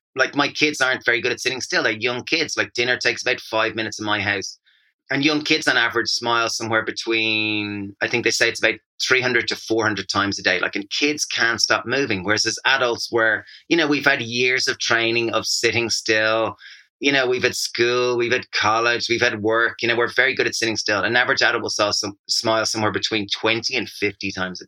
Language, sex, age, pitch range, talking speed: English, male, 30-49, 110-130 Hz, 225 wpm